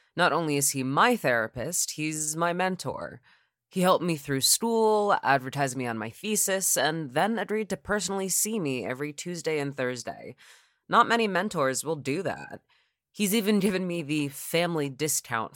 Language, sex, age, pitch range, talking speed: English, female, 20-39, 120-170 Hz, 165 wpm